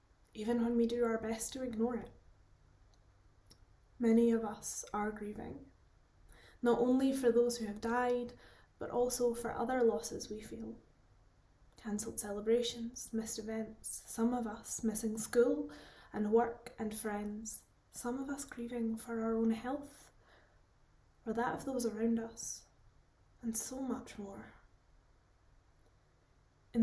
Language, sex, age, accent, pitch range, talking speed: English, female, 10-29, British, 210-240 Hz, 135 wpm